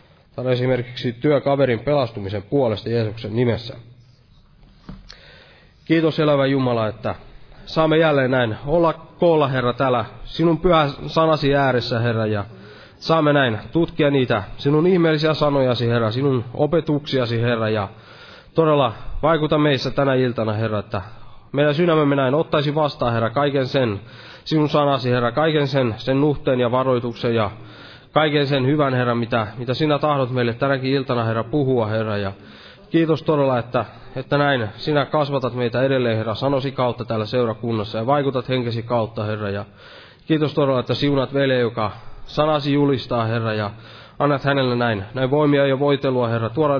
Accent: native